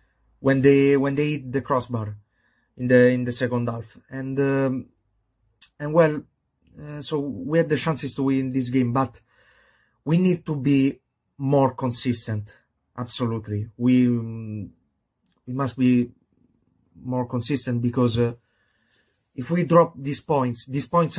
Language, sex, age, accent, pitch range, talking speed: English, male, 30-49, Italian, 115-140 Hz, 140 wpm